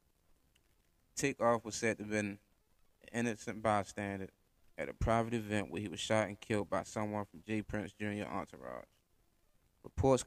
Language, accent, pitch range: English, American, 100-115 Hz